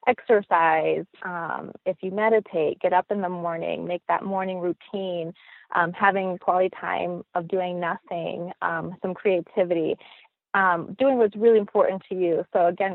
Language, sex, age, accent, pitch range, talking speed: English, female, 30-49, American, 170-205 Hz, 155 wpm